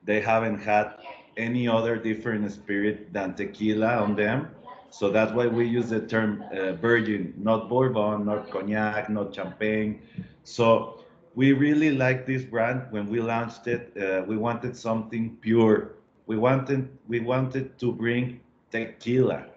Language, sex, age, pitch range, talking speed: English, male, 40-59, 110-125 Hz, 145 wpm